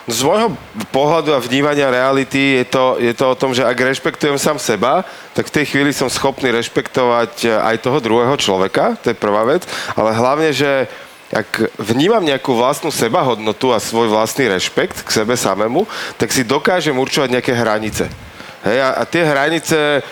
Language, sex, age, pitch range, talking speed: Slovak, male, 40-59, 110-135 Hz, 175 wpm